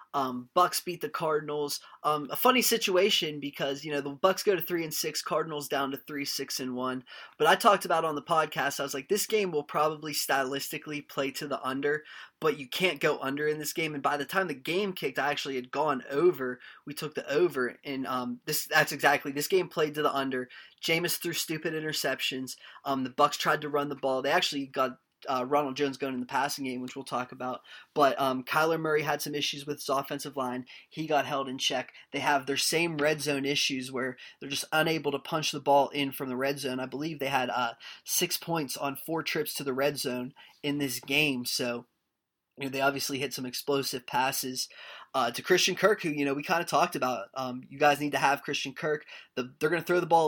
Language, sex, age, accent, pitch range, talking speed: English, male, 20-39, American, 135-155 Hz, 230 wpm